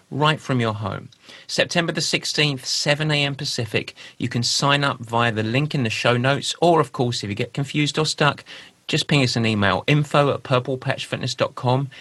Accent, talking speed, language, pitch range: British, 185 wpm, English, 105-135 Hz